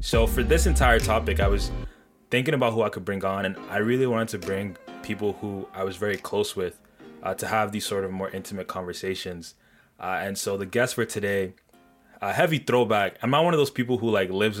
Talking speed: 225 wpm